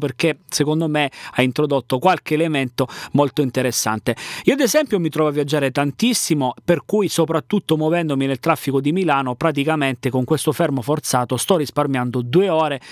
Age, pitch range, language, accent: 30-49, 130-160 Hz, Italian, native